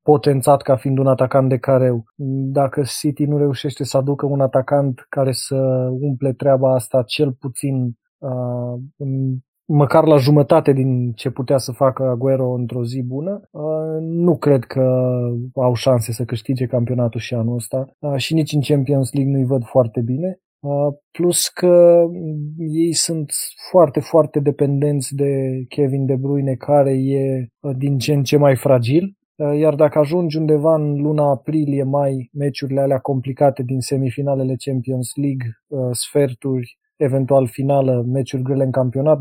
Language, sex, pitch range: Romanian, male, 130-145 Hz